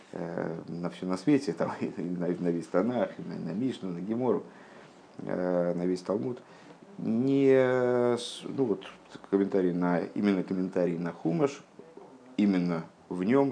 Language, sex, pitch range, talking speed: Russian, male, 90-105 Hz, 130 wpm